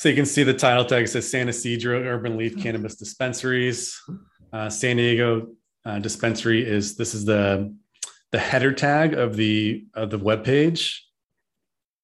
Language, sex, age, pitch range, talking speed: English, male, 30-49, 100-120 Hz, 155 wpm